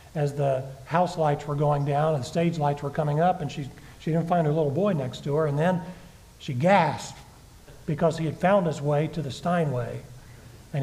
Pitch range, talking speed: 135-160 Hz, 215 wpm